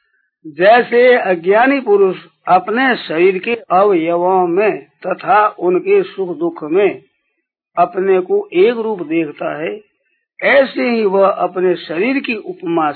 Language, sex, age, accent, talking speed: Hindi, male, 50-69, native, 120 wpm